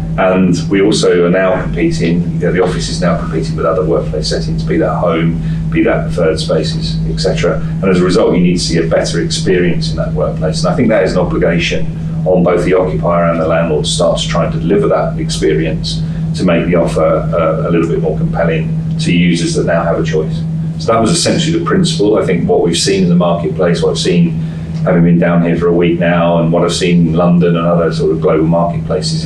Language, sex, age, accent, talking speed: English, male, 40-59, British, 230 wpm